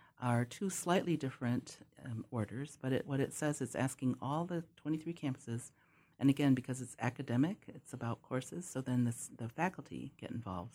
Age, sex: 50-69, female